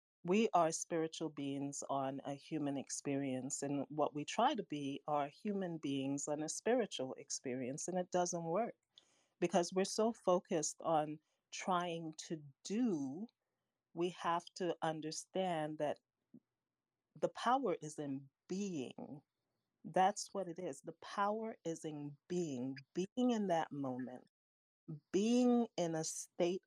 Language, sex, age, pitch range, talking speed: English, female, 30-49, 145-185 Hz, 135 wpm